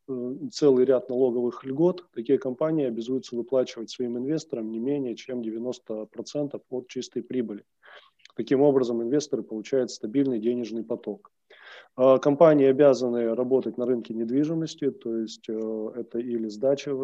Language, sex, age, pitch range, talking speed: Russian, male, 20-39, 120-140 Hz, 125 wpm